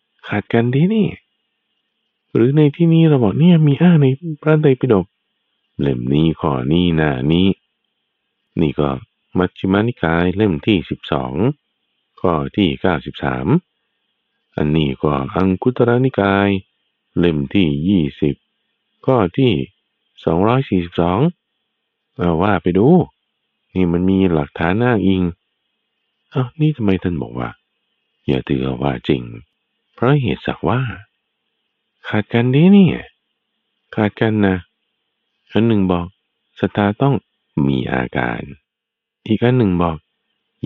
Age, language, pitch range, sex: 60-79, Thai, 85-130 Hz, male